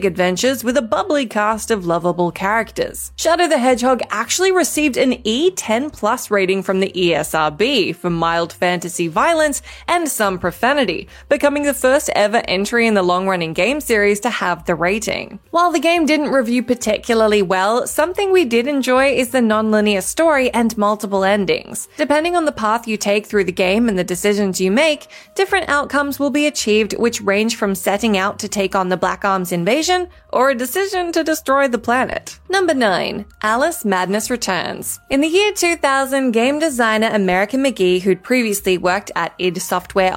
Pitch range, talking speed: 195-285 Hz, 175 wpm